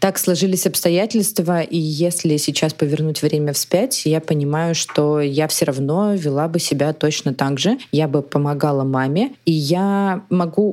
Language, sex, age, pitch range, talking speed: Russian, female, 20-39, 145-185 Hz, 155 wpm